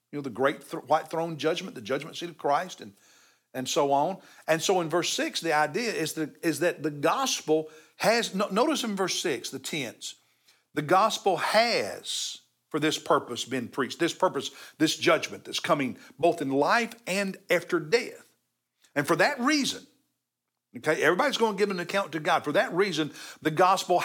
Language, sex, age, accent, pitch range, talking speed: English, male, 50-69, American, 155-255 Hz, 190 wpm